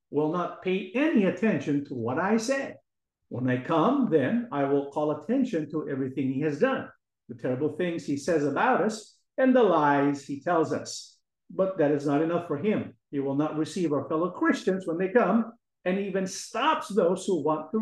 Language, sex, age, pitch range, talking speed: English, male, 50-69, 150-220 Hz, 200 wpm